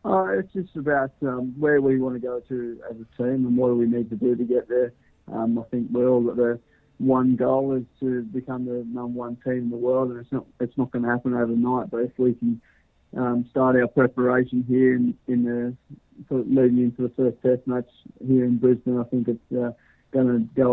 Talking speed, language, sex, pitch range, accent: 225 wpm, English, male, 120-130 Hz, Australian